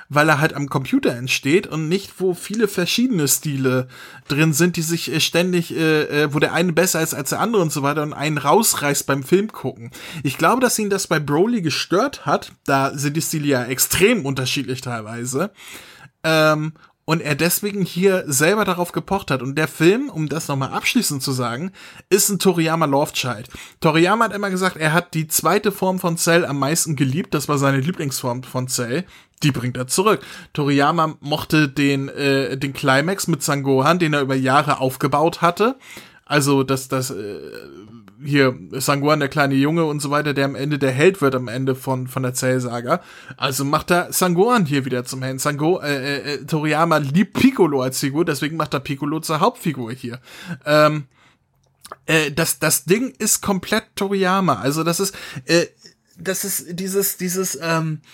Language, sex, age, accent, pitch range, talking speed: German, male, 20-39, German, 135-175 Hz, 185 wpm